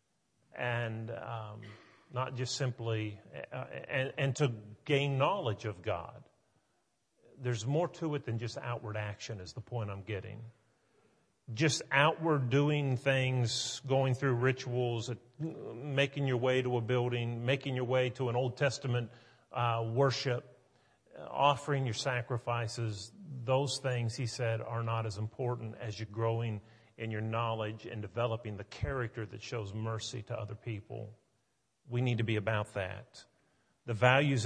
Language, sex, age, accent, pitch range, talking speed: English, male, 40-59, American, 115-140 Hz, 145 wpm